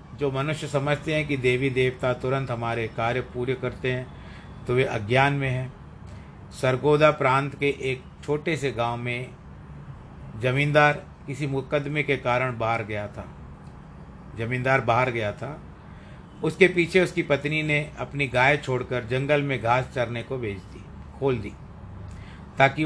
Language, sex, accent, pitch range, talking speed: Hindi, male, native, 120-145 Hz, 145 wpm